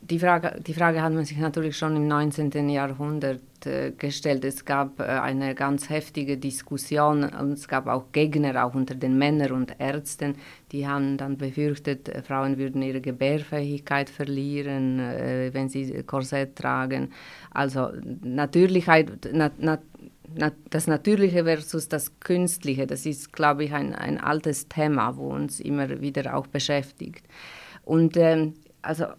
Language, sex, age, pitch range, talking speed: German, female, 30-49, 145-170 Hz, 150 wpm